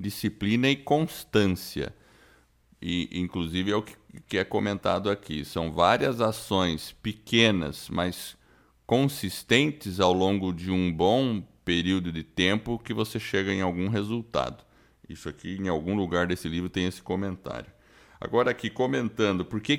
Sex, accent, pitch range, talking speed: male, Brazilian, 85-110 Hz, 135 wpm